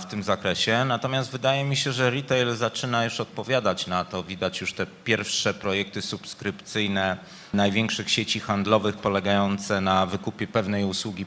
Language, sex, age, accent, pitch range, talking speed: Polish, male, 30-49, native, 105-125 Hz, 150 wpm